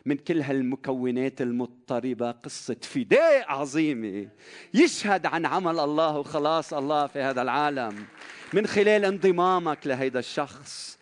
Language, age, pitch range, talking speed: Arabic, 40-59, 110-155 Hz, 115 wpm